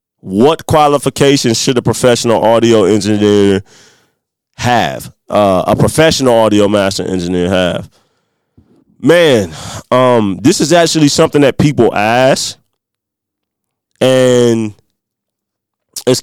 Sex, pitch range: male, 105-125 Hz